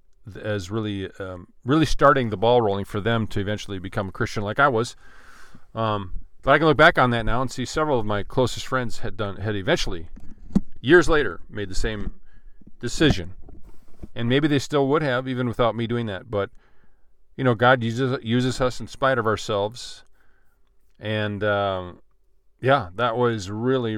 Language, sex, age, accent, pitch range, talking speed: English, male, 40-59, American, 105-135 Hz, 180 wpm